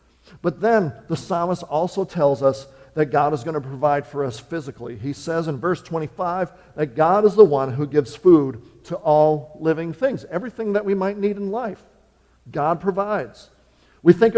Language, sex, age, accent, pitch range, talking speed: English, male, 50-69, American, 135-185 Hz, 185 wpm